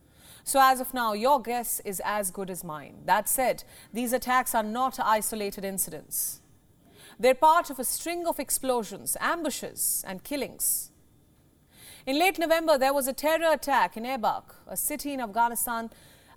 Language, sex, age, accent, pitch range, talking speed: English, female, 40-59, Indian, 220-285 Hz, 160 wpm